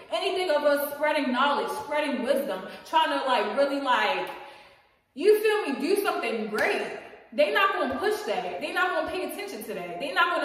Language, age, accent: English, 20-39, American